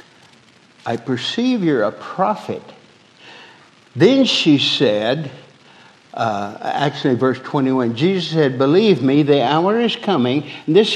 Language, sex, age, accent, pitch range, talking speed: English, male, 60-79, American, 140-170 Hz, 115 wpm